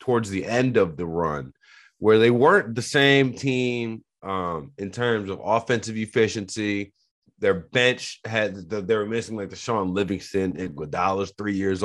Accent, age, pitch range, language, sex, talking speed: American, 30-49, 100-125 Hz, English, male, 165 wpm